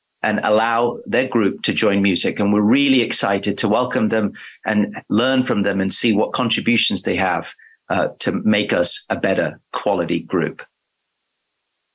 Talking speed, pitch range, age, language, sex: 160 wpm, 100-135 Hz, 40-59, English, male